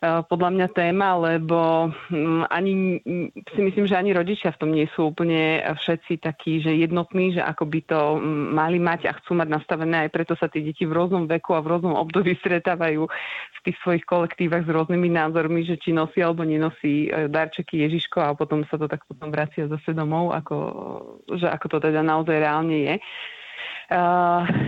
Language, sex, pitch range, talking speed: Slovak, female, 155-180 Hz, 180 wpm